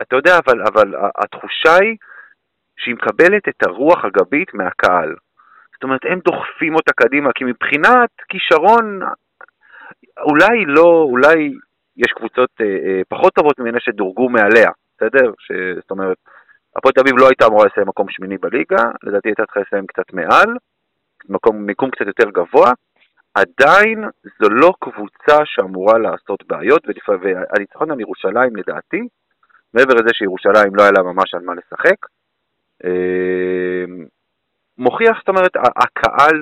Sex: male